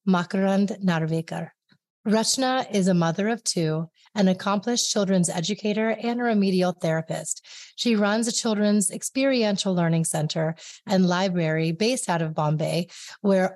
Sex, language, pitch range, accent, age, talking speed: female, English, 180-230 Hz, American, 30-49, 135 wpm